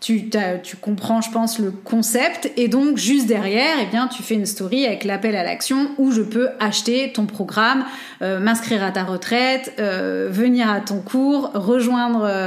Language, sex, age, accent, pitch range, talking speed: French, female, 30-49, French, 210-260 Hz, 170 wpm